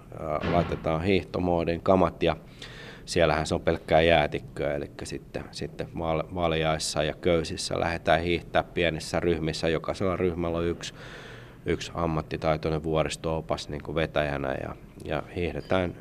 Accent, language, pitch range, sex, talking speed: native, Finnish, 75-90 Hz, male, 120 wpm